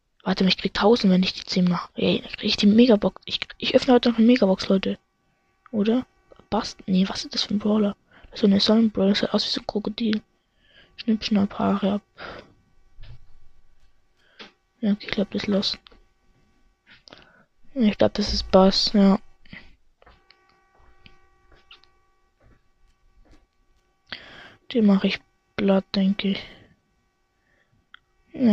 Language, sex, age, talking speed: German, female, 20-39, 145 wpm